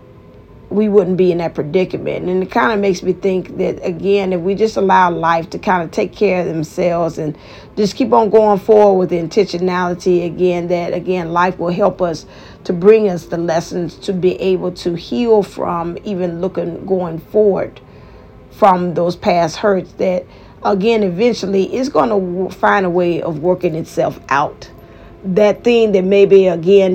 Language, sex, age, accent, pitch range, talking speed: English, female, 40-59, American, 170-195 Hz, 180 wpm